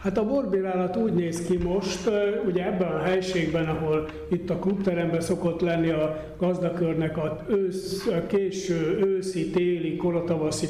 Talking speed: 135 wpm